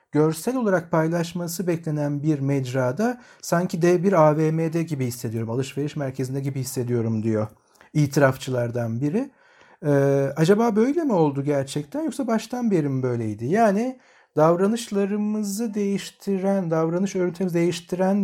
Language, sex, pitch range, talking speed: Turkish, male, 140-190 Hz, 120 wpm